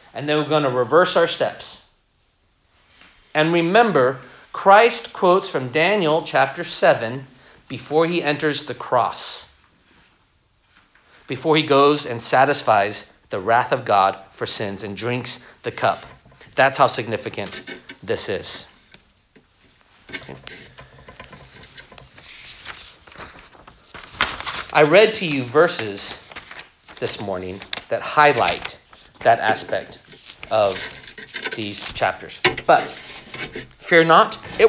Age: 40-59